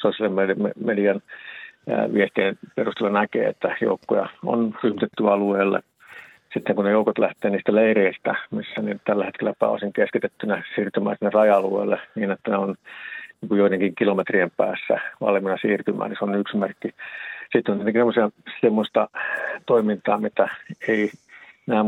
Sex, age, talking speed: male, 50-69, 130 wpm